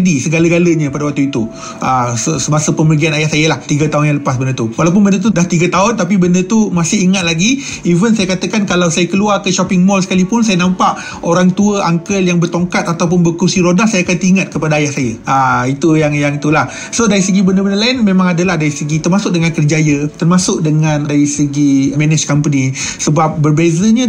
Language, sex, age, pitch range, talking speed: Malay, male, 30-49, 150-190 Hz, 200 wpm